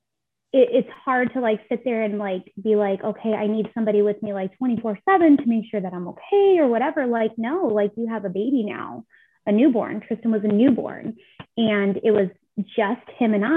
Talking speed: 210 wpm